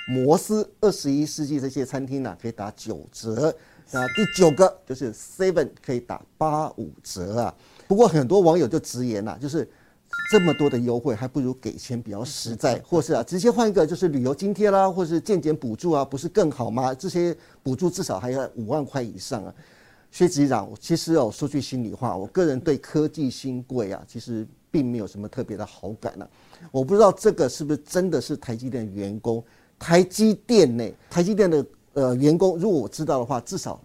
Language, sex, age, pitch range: Chinese, male, 50-69, 120-175 Hz